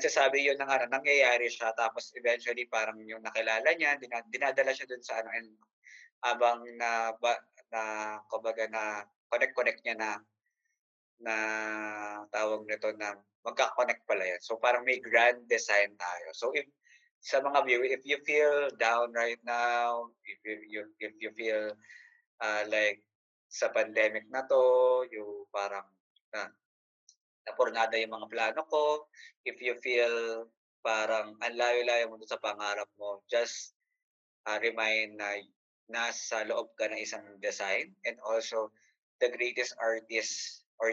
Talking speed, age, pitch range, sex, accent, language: 140 wpm, 20-39, 110-130 Hz, male, Filipino, English